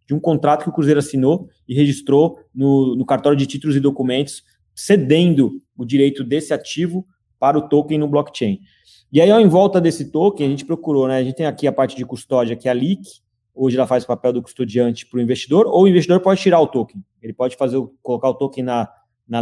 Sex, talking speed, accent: male, 230 wpm, Brazilian